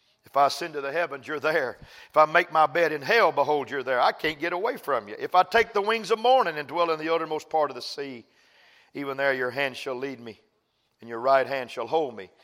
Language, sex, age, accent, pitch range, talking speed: English, male, 50-69, American, 145-185 Hz, 255 wpm